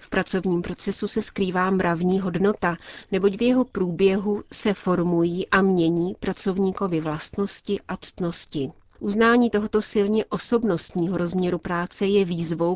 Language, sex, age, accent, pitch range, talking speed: Czech, female, 40-59, native, 170-200 Hz, 125 wpm